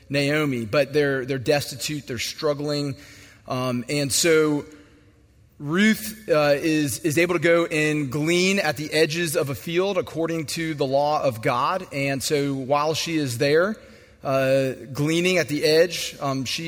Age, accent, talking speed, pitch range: 30-49, American, 160 wpm, 140-170 Hz